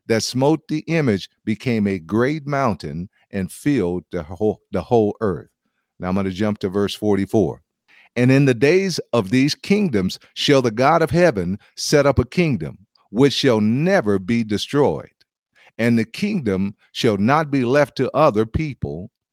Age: 50-69